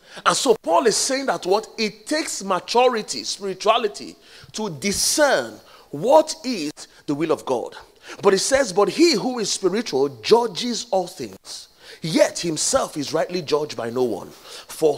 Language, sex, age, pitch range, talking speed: English, male, 30-49, 140-230 Hz, 155 wpm